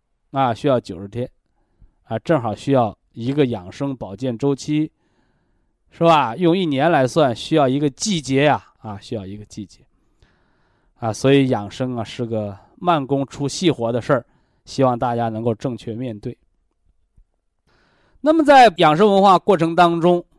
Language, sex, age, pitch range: Chinese, male, 20-39, 115-170 Hz